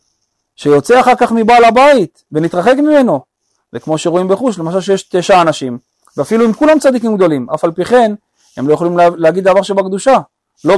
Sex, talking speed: male, 175 wpm